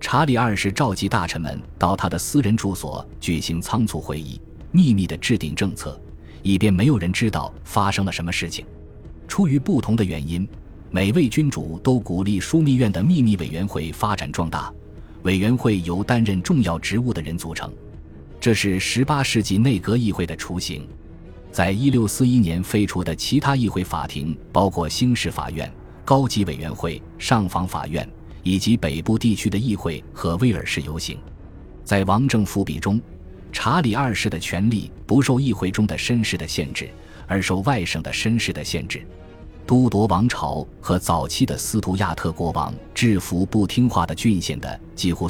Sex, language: male, Chinese